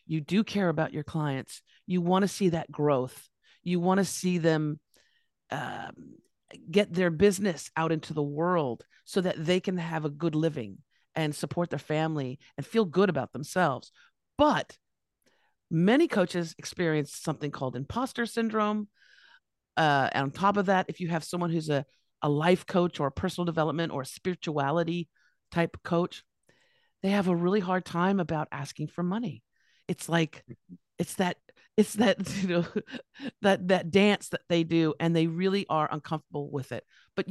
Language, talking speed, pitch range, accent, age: English, 170 wpm, 150-195 Hz, American, 50-69